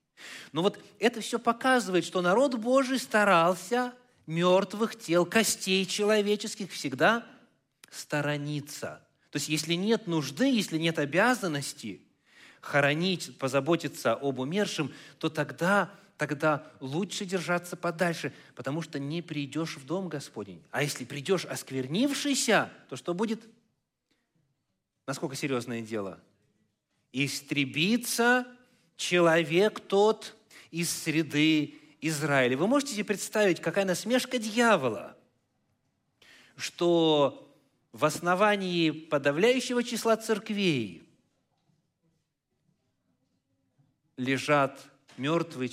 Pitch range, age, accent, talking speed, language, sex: 135-200 Hz, 30-49, native, 95 wpm, Russian, male